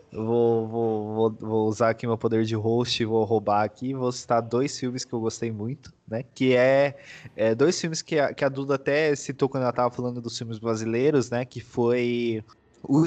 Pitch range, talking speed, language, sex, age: 110-130 Hz, 215 wpm, Portuguese, male, 20-39